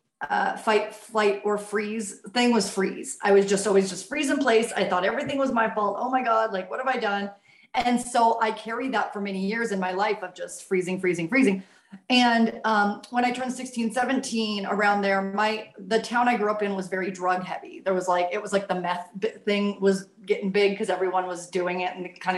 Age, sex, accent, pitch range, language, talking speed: 30-49, female, American, 195-240 Hz, English, 230 wpm